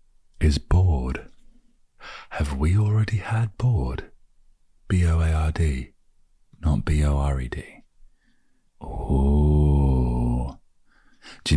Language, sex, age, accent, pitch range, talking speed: English, male, 30-49, British, 65-80 Hz, 65 wpm